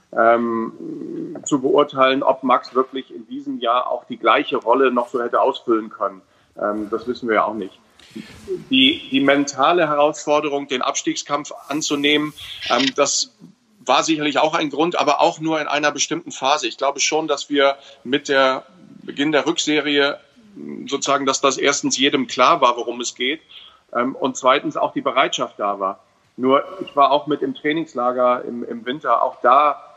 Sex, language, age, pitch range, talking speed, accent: male, German, 40-59, 125-150 Hz, 170 wpm, German